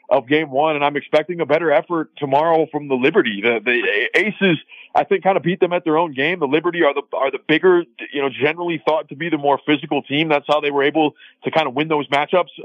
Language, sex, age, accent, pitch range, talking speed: English, male, 30-49, American, 145-170 Hz, 255 wpm